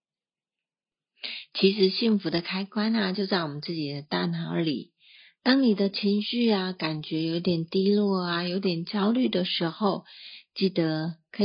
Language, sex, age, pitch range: Chinese, female, 50-69, 170-210 Hz